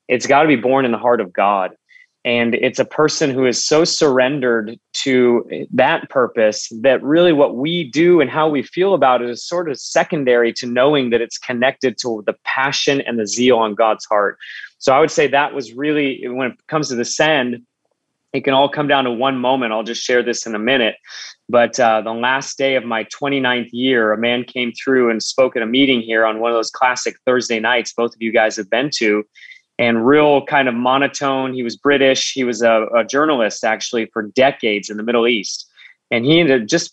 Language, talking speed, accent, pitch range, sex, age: English, 220 wpm, American, 120-140 Hz, male, 30-49